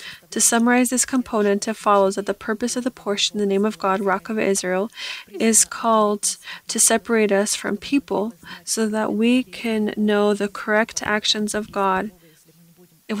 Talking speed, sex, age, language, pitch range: 170 wpm, female, 20-39, English, 195-220 Hz